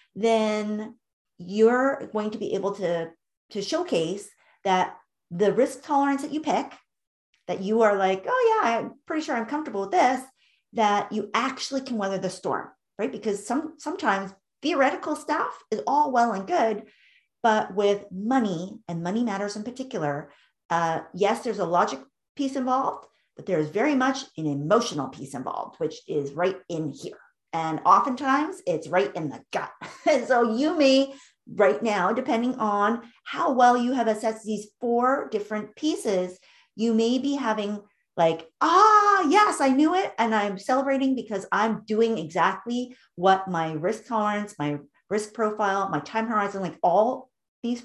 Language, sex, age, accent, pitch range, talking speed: English, female, 40-59, American, 190-260 Hz, 160 wpm